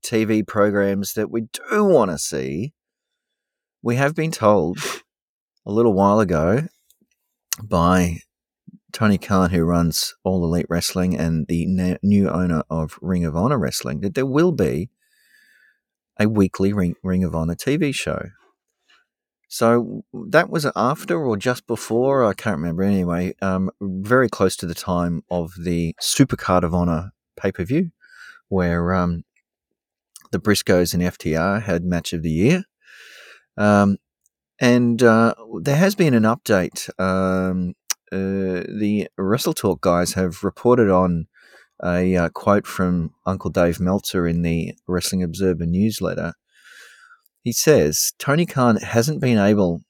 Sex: male